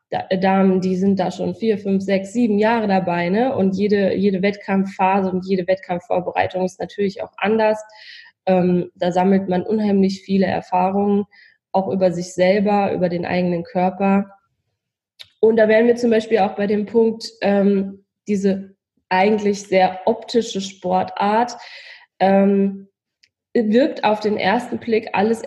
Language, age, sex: German, 20-39, female